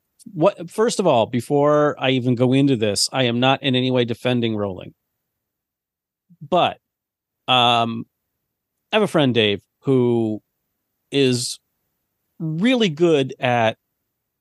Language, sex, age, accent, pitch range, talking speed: English, male, 40-59, American, 115-150 Hz, 125 wpm